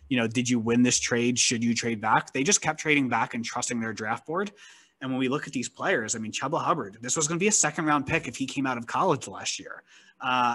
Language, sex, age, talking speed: English, male, 20-39, 280 wpm